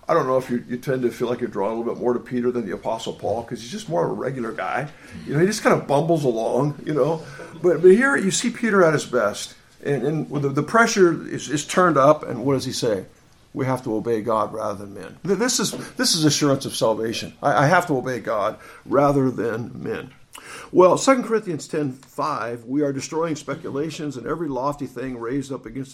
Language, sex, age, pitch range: English, male, 50-69, 125-170 Hz